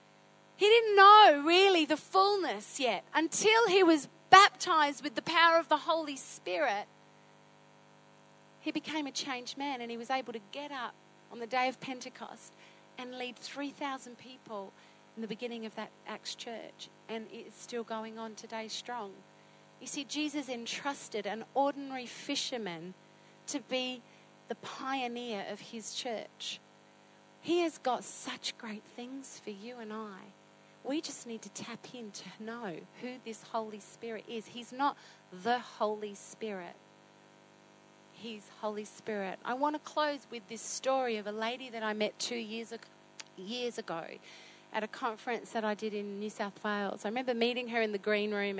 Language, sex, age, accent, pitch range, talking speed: English, female, 40-59, Australian, 210-270 Hz, 165 wpm